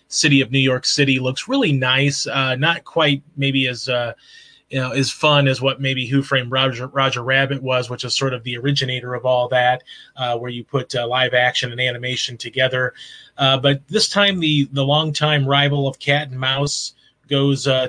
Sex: male